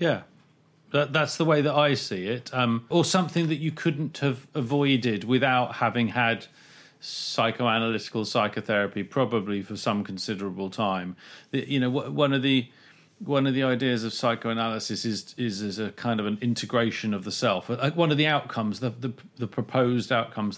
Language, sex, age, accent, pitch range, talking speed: English, male, 40-59, British, 110-140 Hz, 180 wpm